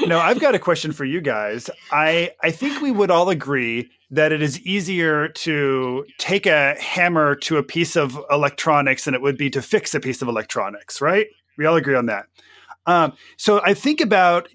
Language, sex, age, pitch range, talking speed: English, male, 30-49, 140-195 Hz, 200 wpm